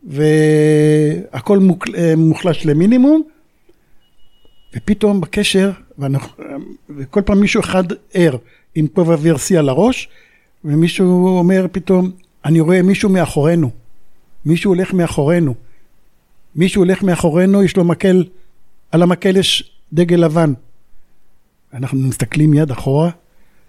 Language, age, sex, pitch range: Hebrew, 60-79, male, 150-200 Hz